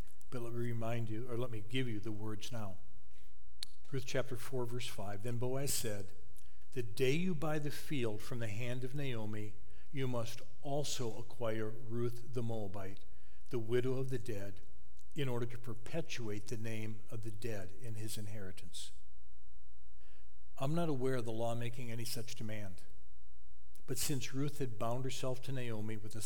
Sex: male